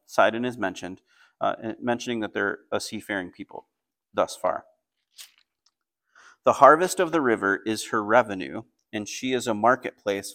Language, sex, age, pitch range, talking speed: English, male, 30-49, 110-145 Hz, 145 wpm